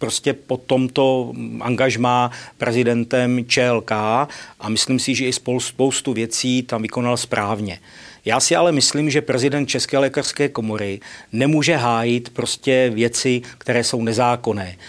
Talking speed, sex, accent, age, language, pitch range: 130 wpm, male, native, 50-69, Czech, 120-145 Hz